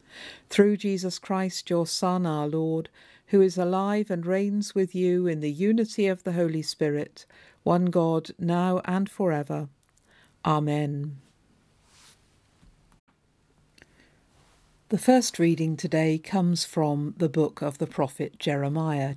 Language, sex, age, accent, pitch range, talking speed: English, female, 50-69, British, 155-200 Hz, 125 wpm